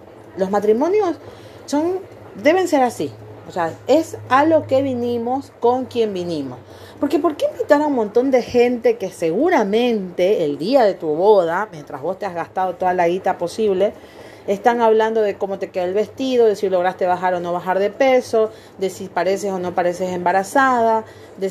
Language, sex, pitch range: Spanish, female, 185-245 Hz